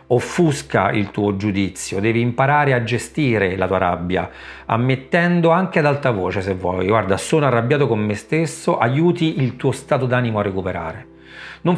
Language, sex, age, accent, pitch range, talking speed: Italian, male, 40-59, native, 105-140 Hz, 165 wpm